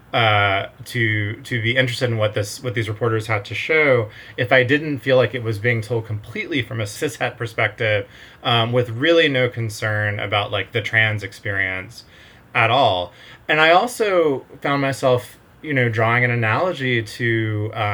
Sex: male